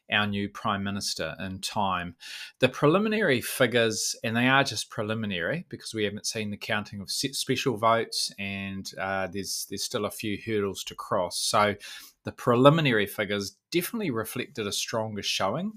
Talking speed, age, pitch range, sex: 160 wpm, 20-39, 100-120 Hz, male